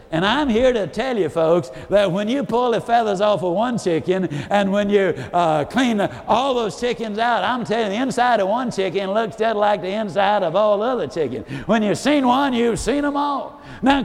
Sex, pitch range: male, 195-250 Hz